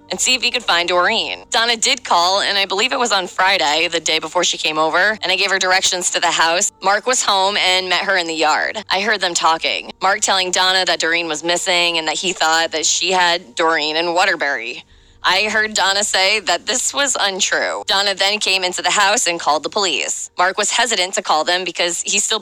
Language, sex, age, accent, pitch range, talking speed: English, female, 20-39, American, 165-200 Hz, 235 wpm